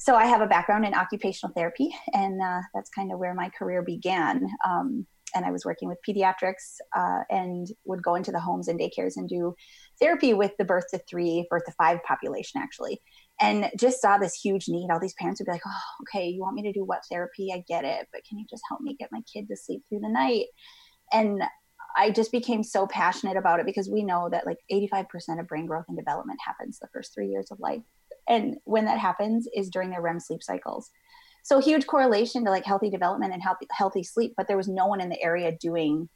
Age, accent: 20-39, American